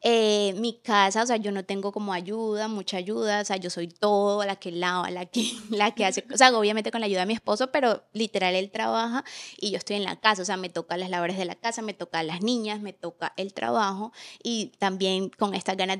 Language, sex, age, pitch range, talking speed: Spanish, female, 20-39, 185-225 Hz, 250 wpm